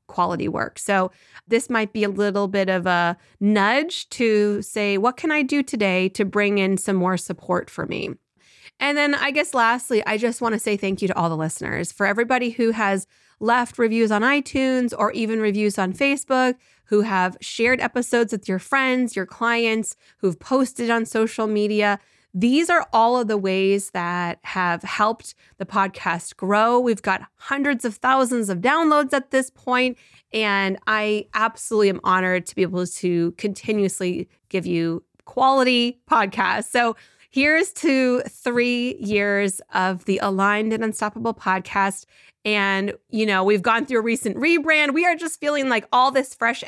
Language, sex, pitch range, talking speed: English, female, 195-250 Hz, 170 wpm